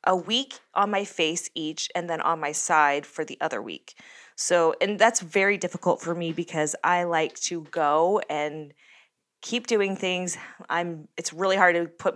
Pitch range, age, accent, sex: 165-245 Hz, 20-39, American, female